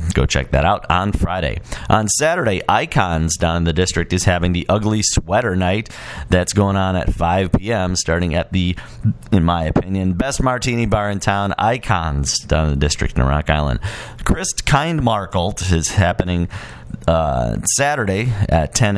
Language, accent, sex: English, American, male